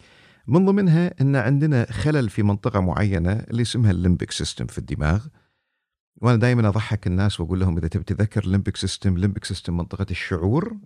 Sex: male